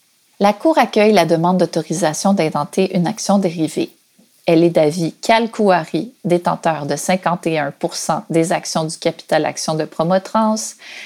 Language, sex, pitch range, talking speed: English, female, 170-220 Hz, 130 wpm